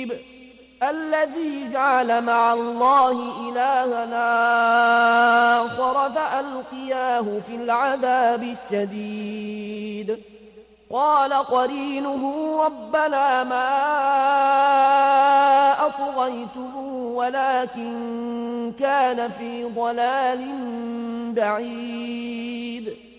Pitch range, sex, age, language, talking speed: 235-275 Hz, male, 30-49, Arabic, 50 wpm